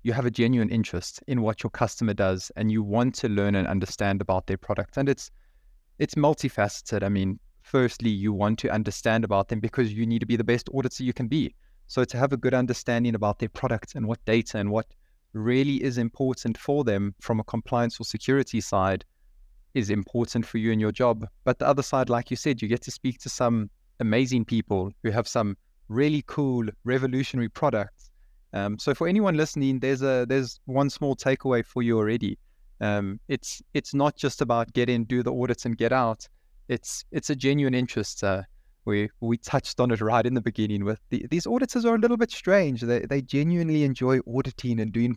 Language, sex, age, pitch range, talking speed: English, male, 20-39, 105-130 Hz, 205 wpm